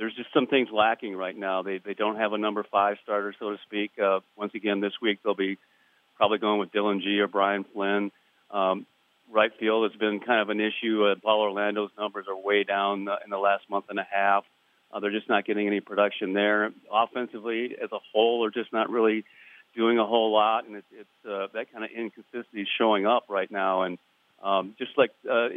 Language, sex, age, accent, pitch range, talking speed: English, male, 40-59, American, 100-110 Hz, 220 wpm